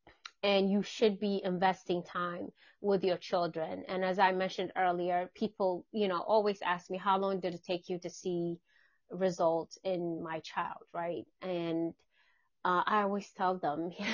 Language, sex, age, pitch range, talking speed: English, female, 30-49, 170-195 Hz, 165 wpm